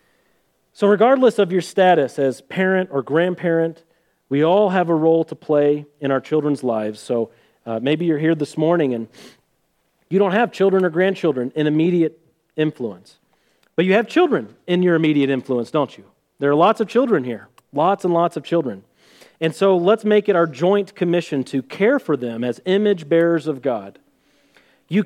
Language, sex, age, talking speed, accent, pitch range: English, male, 40-59, 180 wpm, American, 150-220 Hz